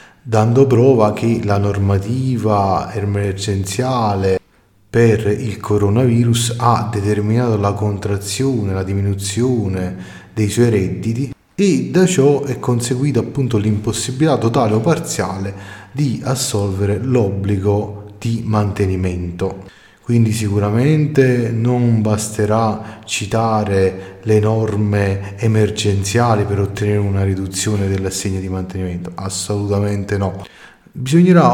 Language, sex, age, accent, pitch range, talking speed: Italian, male, 30-49, native, 100-120 Hz, 95 wpm